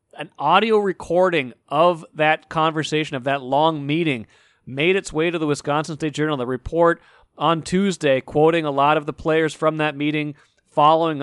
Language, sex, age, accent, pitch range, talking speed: English, male, 40-59, American, 140-165 Hz, 170 wpm